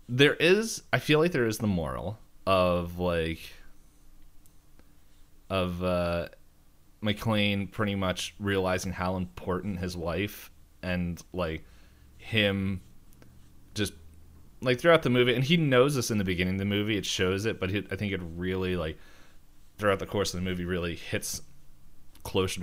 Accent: American